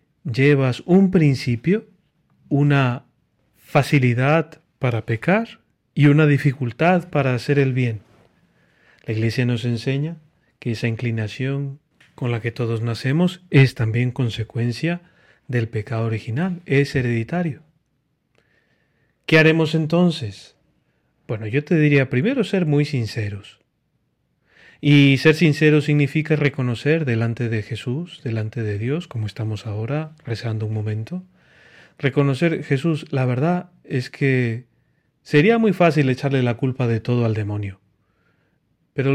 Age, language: 40-59, Spanish